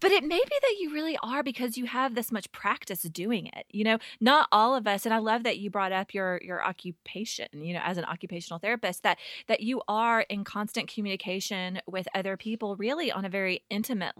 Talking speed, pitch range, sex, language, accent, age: 225 wpm, 180-225 Hz, female, English, American, 20-39